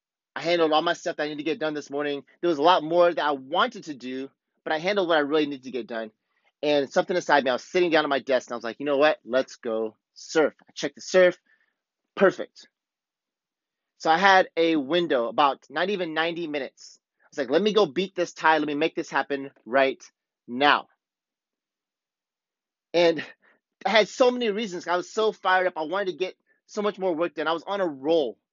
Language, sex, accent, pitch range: English, male, American, 145-185 Hz